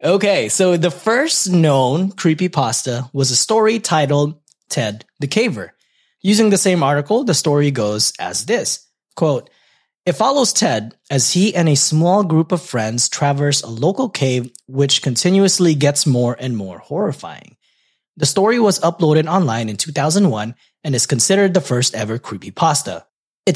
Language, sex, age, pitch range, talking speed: English, male, 20-39, 130-180 Hz, 150 wpm